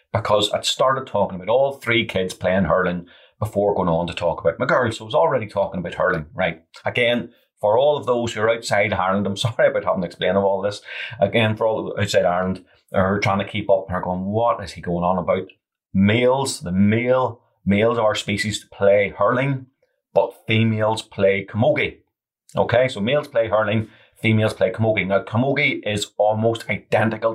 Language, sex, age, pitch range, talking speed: English, male, 30-49, 95-115 Hz, 195 wpm